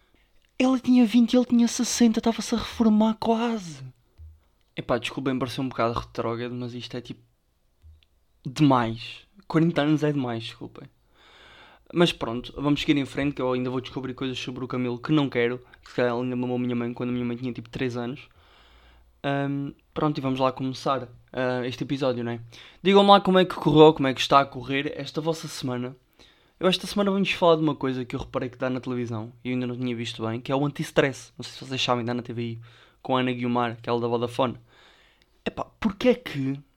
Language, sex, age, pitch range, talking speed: Portuguese, male, 20-39, 120-170 Hz, 220 wpm